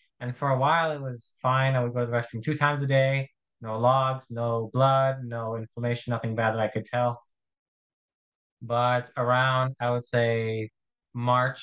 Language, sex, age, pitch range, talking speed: English, male, 20-39, 115-135 Hz, 180 wpm